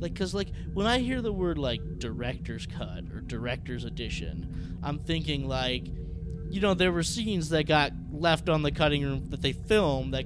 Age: 20-39